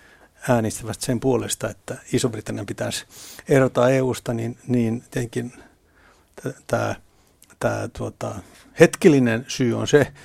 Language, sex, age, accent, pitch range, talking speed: Finnish, male, 60-79, native, 120-140 Hz, 100 wpm